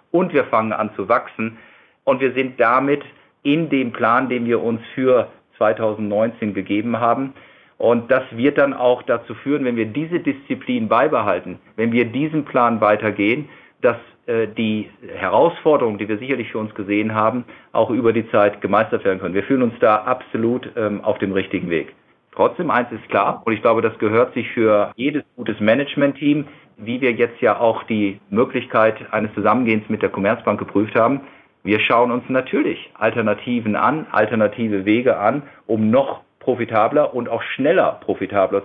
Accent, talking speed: German, 170 wpm